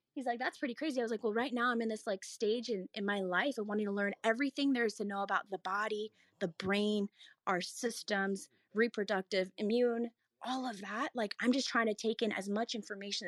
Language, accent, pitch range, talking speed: English, American, 210-275 Hz, 230 wpm